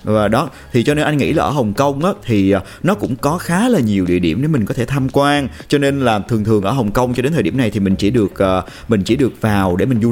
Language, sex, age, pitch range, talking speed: Vietnamese, male, 30-49, 105-150 Hz, 300 wpm